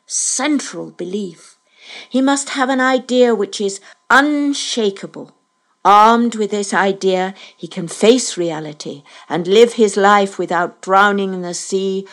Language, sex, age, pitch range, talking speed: English, female, 60-79, 170-230 Hz, 135 wpm